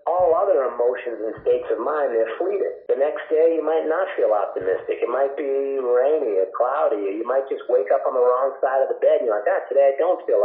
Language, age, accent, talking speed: English, 50-69, American, 255 wpm